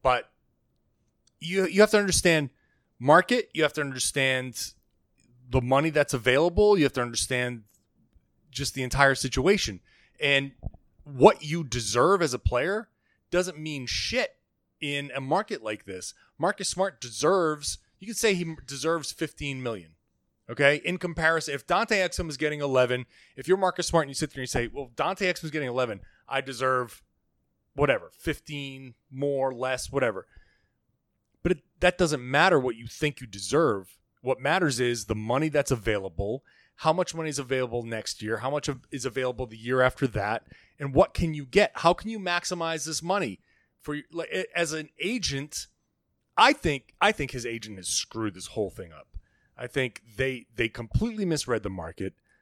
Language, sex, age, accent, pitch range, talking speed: English, male, 30-49, American, 125-165 Hz, 170 wpm